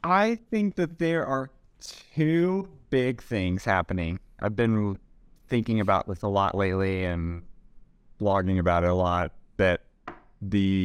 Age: 30-49